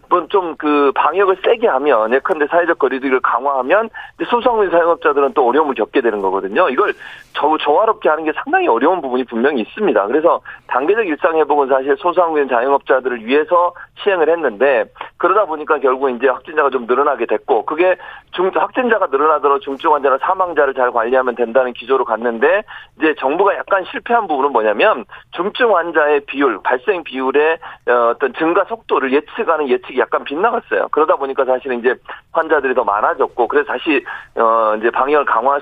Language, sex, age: Korean, male, 40-59